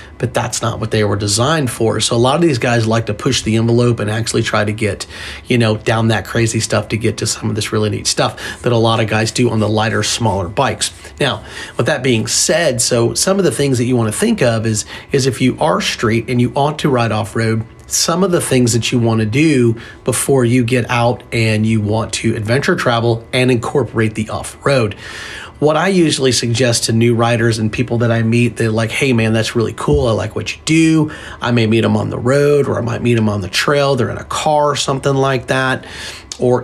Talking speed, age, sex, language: 245 wpm, 30-49, male, English